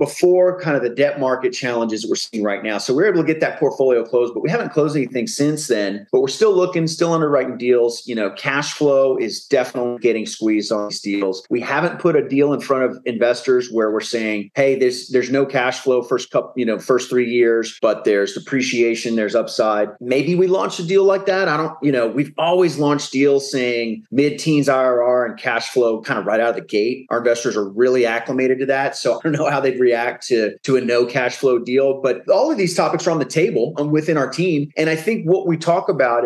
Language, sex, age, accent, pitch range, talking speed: English, male, 30-49, American, 120-160 Hz, 240 wpm